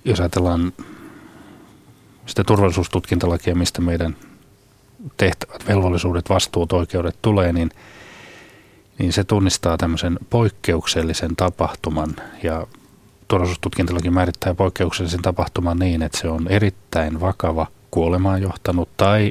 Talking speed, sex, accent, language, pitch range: 100 wpm, male, native, Finnish, 85-100 Hz